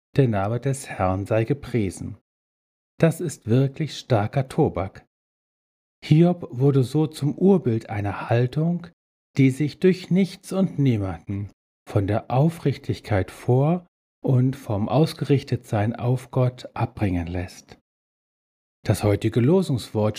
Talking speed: 115 wpm